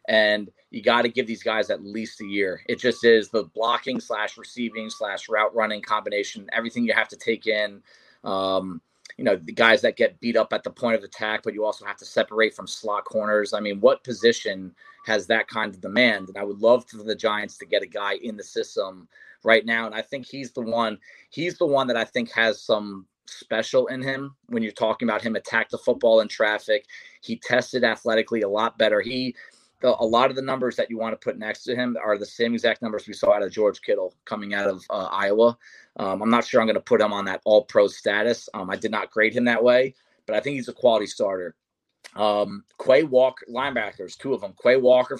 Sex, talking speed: male, 235 wpm